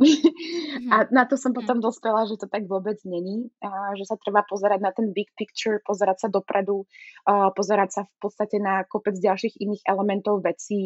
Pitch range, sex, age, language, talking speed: 190-225 Hz, female, 20-39, Slovak, 175 wpm